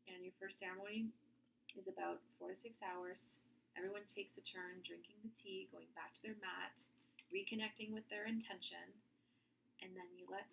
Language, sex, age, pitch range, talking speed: English, female, 30-49, 185-225 Hz, 170 wpm